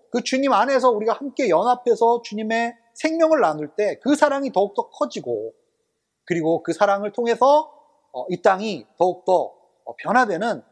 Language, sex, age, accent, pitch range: Korean, male, 30-49, native, 170-245 Hz